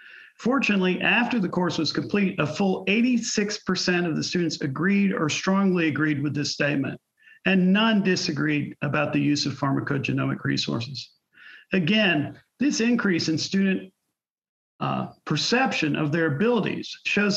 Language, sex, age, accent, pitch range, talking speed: English, male, 50-69, American, 160-200 Hz, 135 wpm